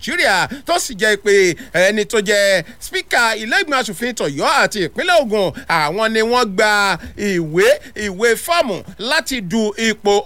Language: English